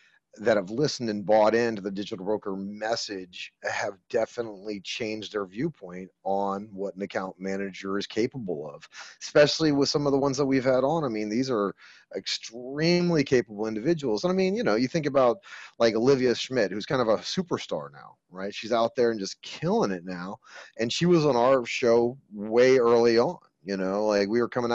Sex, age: male, 30-49